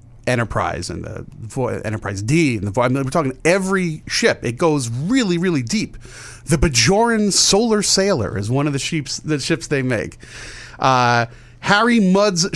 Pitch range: 120-175 Hz